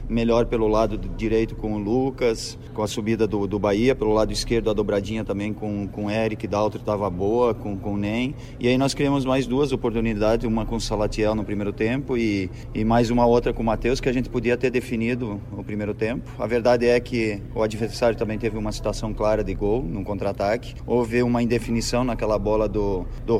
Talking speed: 215 wpm